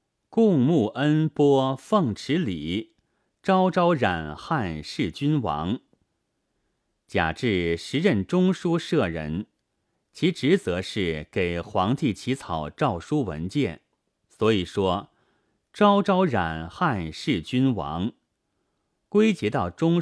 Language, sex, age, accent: Chinese, male, 30-49, native